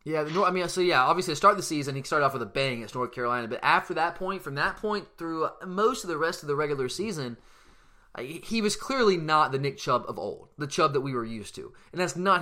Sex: male